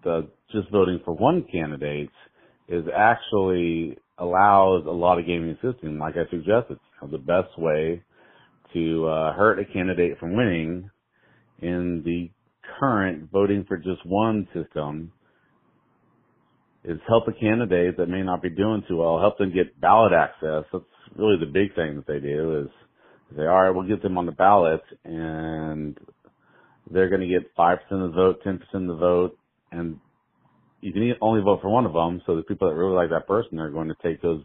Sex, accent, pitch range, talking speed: male, American, 85-100 Hz, 180 wpm